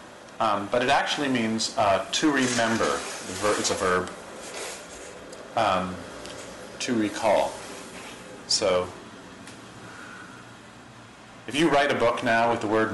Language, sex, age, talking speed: English, male, 40-59, 110 wpm